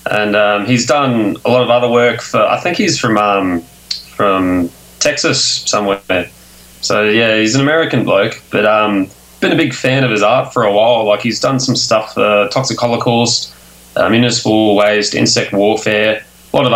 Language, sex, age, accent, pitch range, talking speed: English, male, 20-39, Australian, 90-120 Hz, 190 wpm